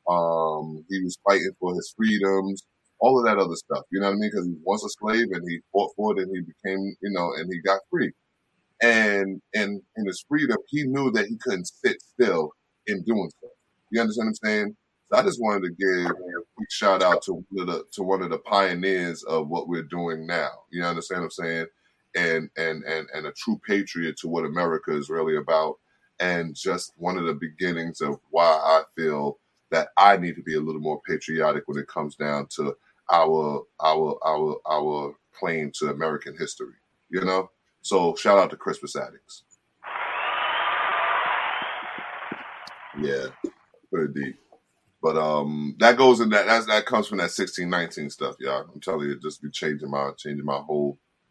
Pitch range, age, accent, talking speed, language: 80-100 Hz, 20-39, American, 195 wpm, English